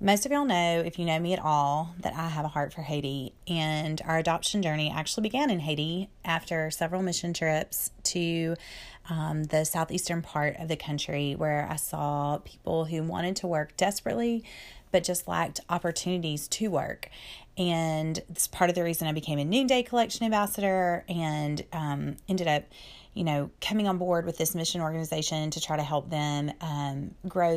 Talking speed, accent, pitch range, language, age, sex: 185 wpm, American, 155-185 Hz, English, 30-49, female